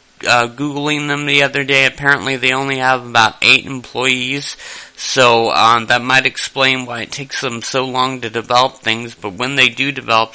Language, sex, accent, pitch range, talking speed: English, male, American, 110-130 Hz, 185 wpm